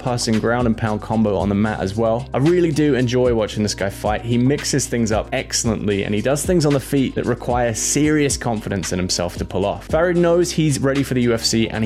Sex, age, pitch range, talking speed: male, 20-39, 110-145 Hz, 240 wpm